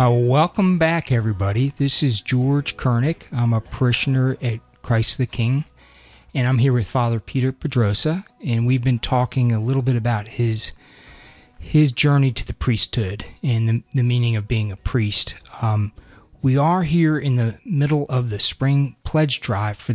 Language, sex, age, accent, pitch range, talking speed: English, male, 30-49, American, 110-130 Hz, 170 wpm